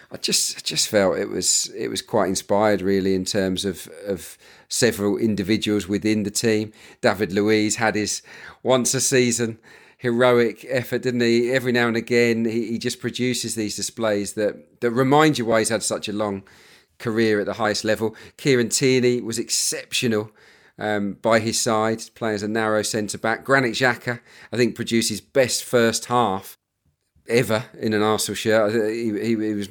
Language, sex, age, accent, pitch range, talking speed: English, male, 40-59, British, 105-120 Hz, 175 wpm